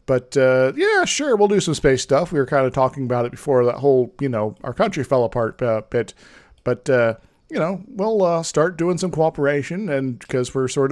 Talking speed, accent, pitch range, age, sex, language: 225 wpm, American, 125-170 Hz, 40-59, male, English